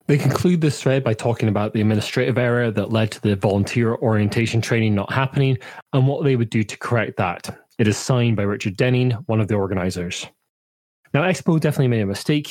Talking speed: 205 wpm